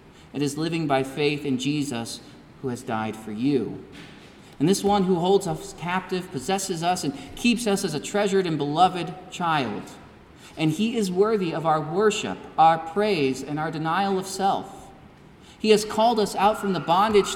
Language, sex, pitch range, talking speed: English, male, 140-200 Hz, 180 wpm